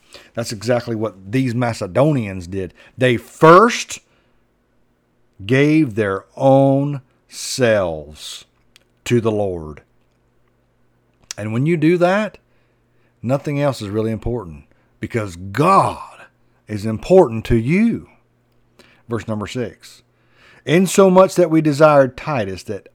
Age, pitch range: 50-69, 100-145 Hz